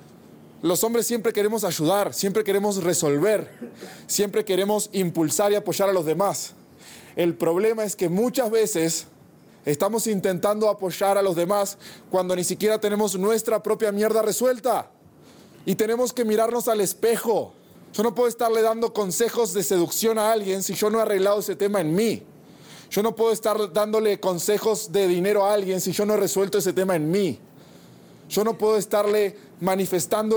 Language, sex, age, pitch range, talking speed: Spanish, male, 20-39, 175-215 Hz, 170 wpm